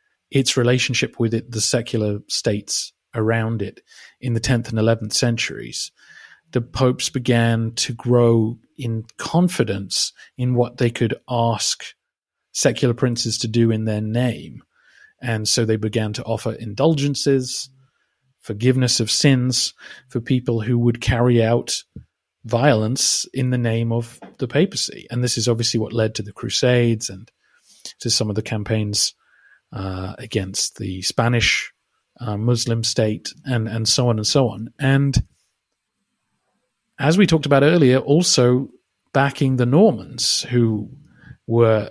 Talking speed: 140 wpm